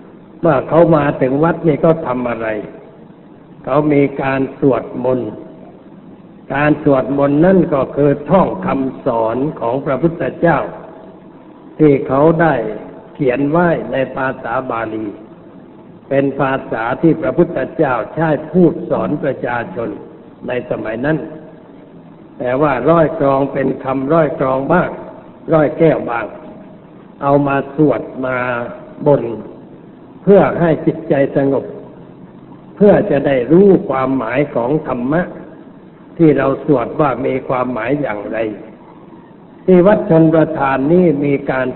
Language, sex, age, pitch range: Thai, male, 60-79, 130-160 Hz